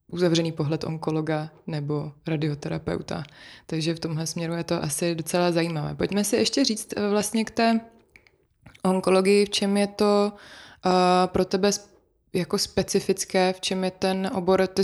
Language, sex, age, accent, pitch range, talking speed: Czech, female, 20-39, native, 160-190 Hz, 145 wpm